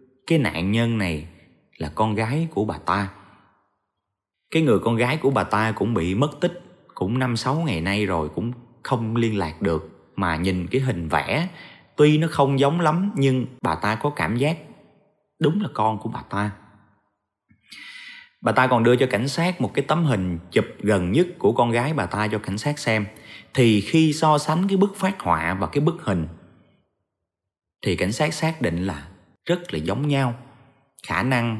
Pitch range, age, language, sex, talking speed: 95-130 Hz, 20-39, Vietnamese, male, 190 wpm